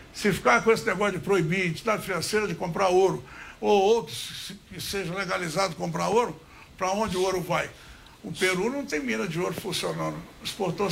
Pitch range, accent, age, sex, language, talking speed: 190-235 Hz, Brazilian, 60-79, male, English, 185 wpm